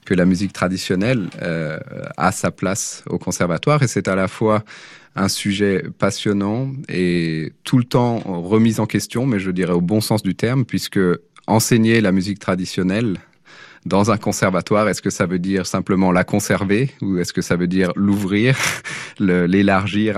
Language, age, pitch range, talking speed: French, 30-49, 85-105 Hz, 170 wpm